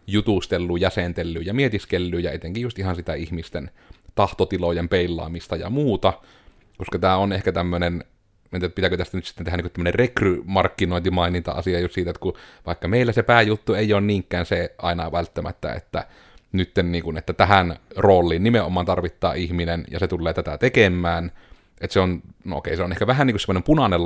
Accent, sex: native, male